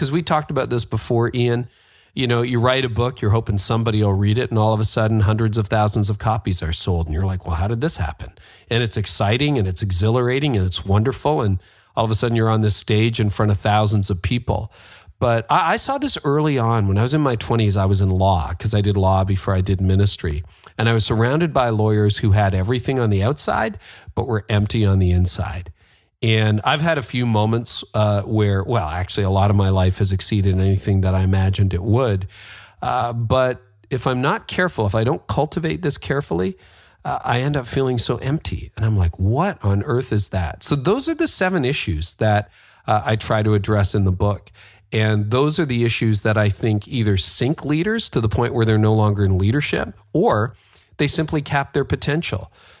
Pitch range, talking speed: 100-120 Hz, 225 wpm